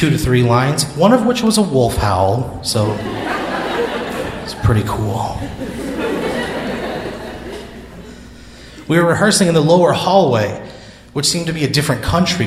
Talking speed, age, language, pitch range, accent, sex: 140 wpm, 30-49, English, 110-125 Hz, American, male